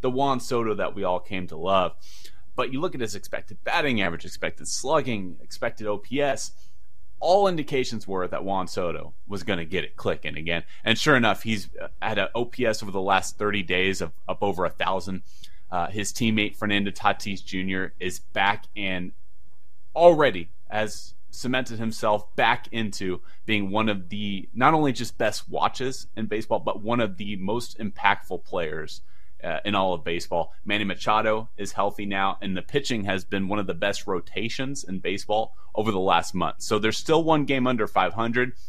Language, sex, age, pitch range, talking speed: English, male, 30-49, 95-125 Hz, 180 wpm